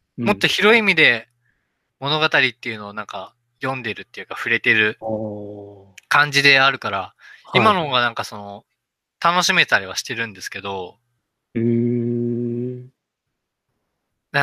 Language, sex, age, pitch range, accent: Japanese, male, 20-39, 115-185 Hz, native